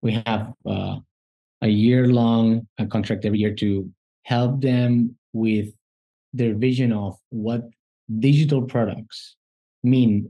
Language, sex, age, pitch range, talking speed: English, male, 20-39, 110-135 Hz, 110 wpm